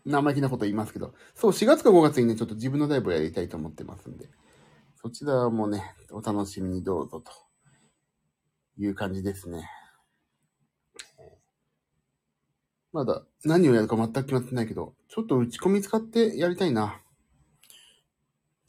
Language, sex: Japanese, male